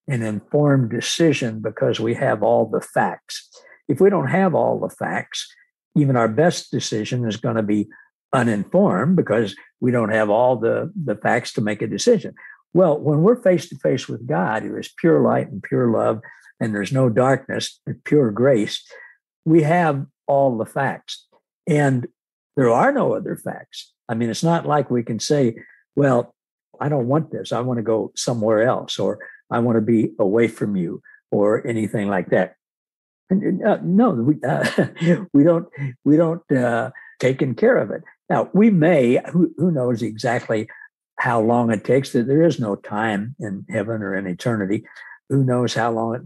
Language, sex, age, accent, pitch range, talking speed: English, male, 60-79, American, 110-155 Hz, 180 wpm